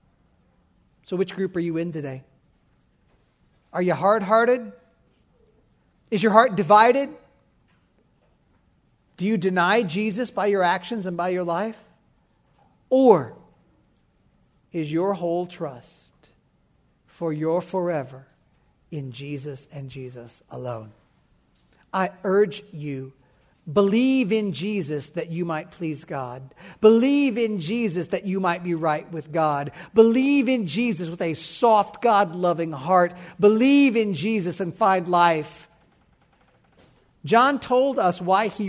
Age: 40-59